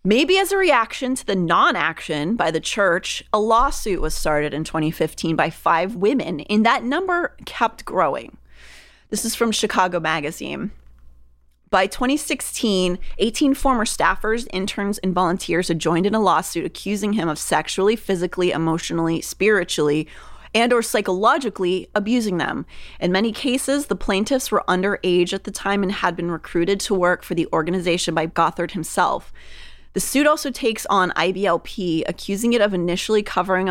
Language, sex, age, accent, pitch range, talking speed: English, female, 30-49, American, 165-215 Hz, 155 wpm